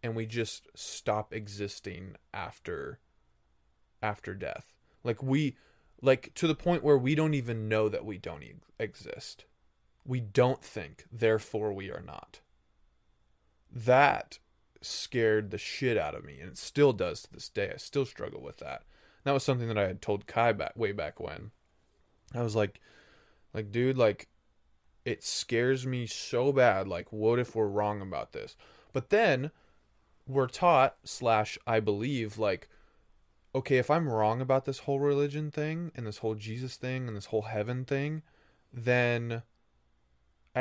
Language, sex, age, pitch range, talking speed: English, male, 20-39, 105-130 Hz, 160 wpm